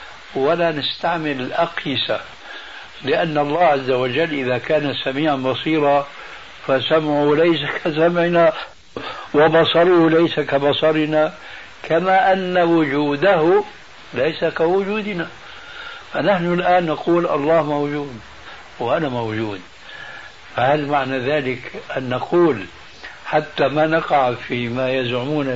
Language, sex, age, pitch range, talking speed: Arabic, male, 60-79, 135-165 Hz, 95 wpm